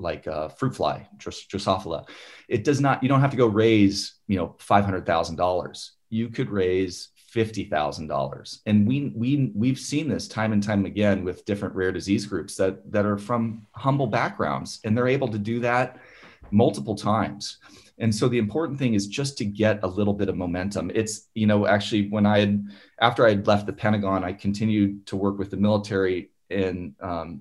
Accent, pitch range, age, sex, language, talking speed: American, 100-115 Hz, 30-49, male, English, 190 wpm